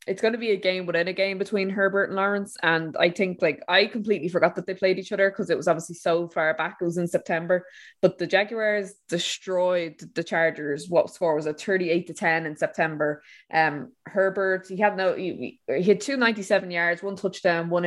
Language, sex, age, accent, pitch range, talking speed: English, female, 20-39, Irish, 165-190 Hz, 215 wpm